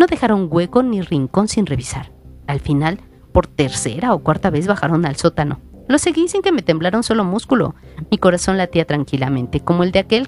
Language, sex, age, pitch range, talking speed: Spanish, female, 40-59, 135-215 Hz, 200 wpm